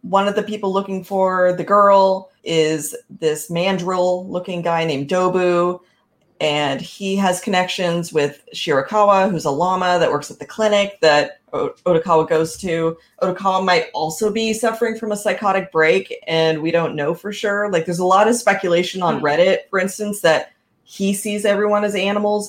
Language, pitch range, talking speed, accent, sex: English, 160-205 Hz, 170 wpm, American, female